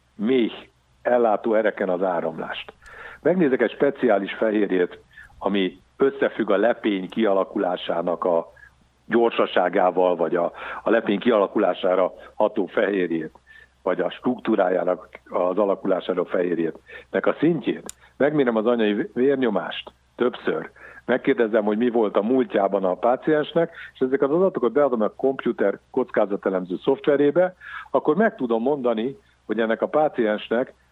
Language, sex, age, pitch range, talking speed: Hungarian, male, 60-79, 100-135 Hz, 120 wpm